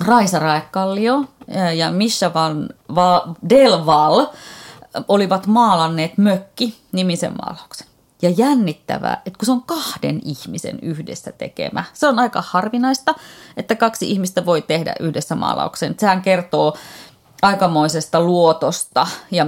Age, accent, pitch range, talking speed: 30-49, native, 160-225 Hz, 115 wpm